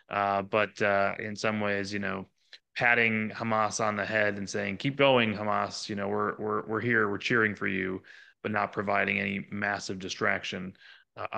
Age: 30-49